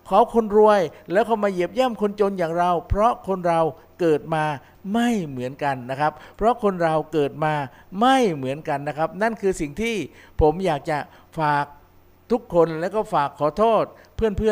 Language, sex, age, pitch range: Thai, male, 60-79, 150-200 Hz